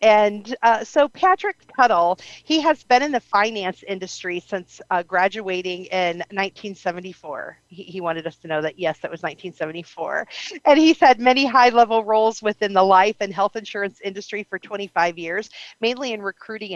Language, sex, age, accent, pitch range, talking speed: English, female, 40-59, American, 185-235 Hz, 170 wpm